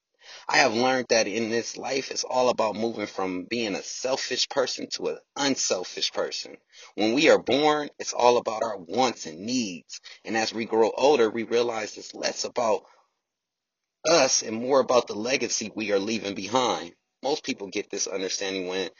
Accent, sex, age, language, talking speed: American, male, 30-49, English, 180 wpm